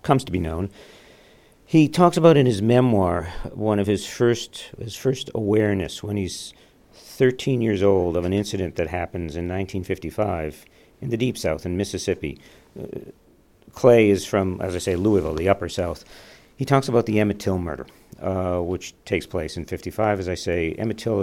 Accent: American